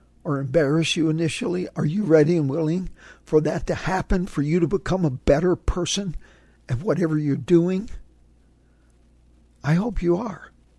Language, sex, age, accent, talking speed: English, male, 60-79, American, 155 wpm